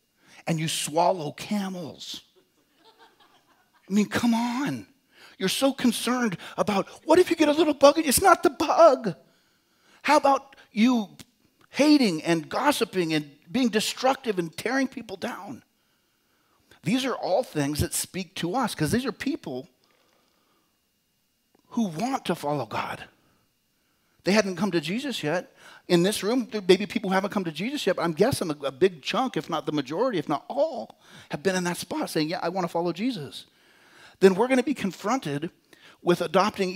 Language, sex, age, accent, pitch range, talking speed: English, male, 40-59, American, 155-230 Hz, 170 wpm